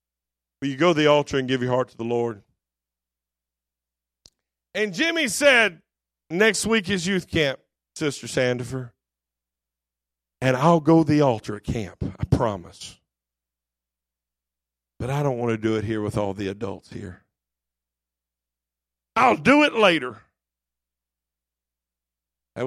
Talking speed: 130 wpm